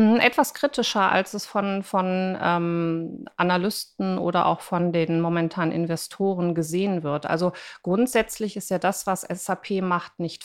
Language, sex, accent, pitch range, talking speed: German, female, German, 175-210 Hz, 145 wpm